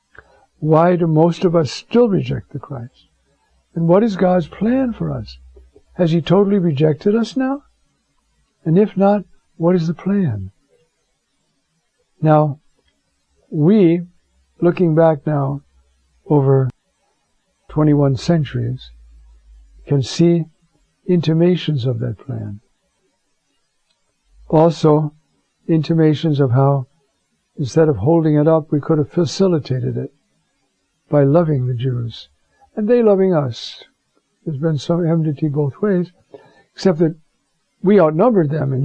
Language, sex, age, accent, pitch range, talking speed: English, male, 60-79, American, 130-170 Hz, 120 wpm